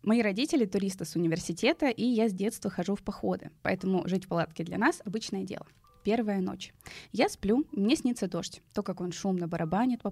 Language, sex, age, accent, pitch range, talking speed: Russian, female, 20-39, native, 180-230 Hz, 195 wpm